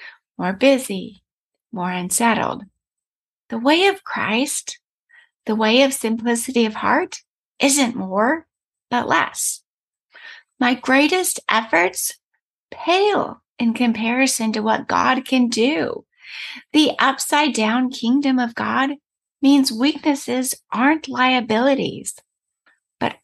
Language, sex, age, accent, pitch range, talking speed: English, female, 30-49, American, 220-285 Hz, 105 wpm